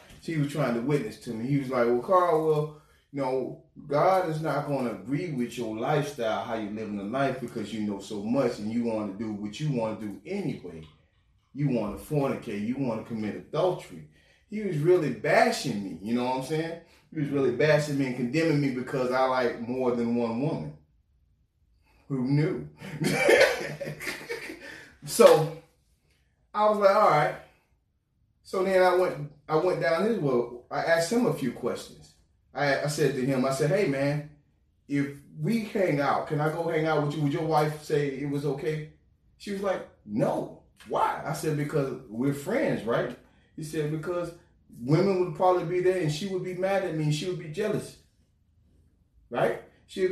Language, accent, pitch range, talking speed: English, American, 120-170 Hz, 195 wpm